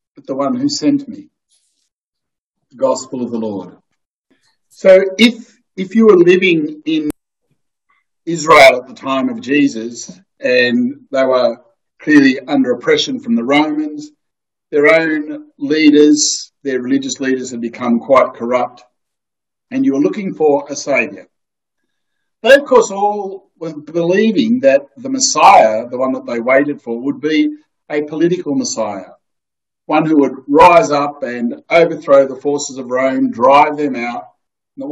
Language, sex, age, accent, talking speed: English, male, 50-69, Australian, 145 wpm